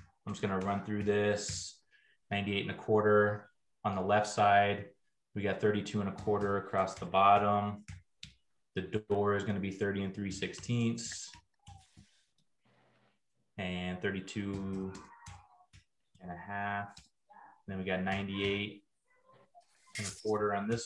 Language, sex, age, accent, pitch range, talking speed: English, male, 20-39, American, 95-110 Hz, 135 wpm